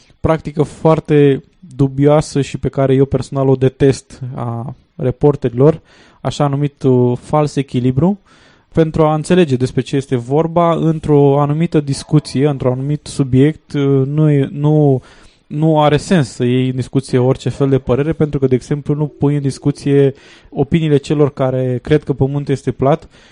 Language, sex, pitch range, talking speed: Romanian, male, 130-150 Hz, 150 wpm